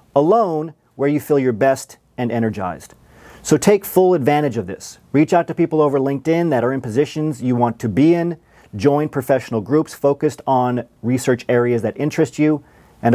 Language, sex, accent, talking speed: English, male, American, 185 wpm